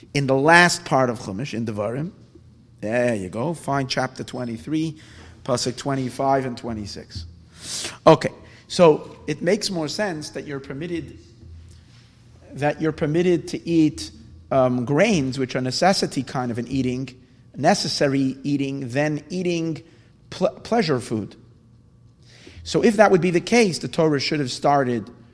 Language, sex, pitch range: English, male, 120-165 Hz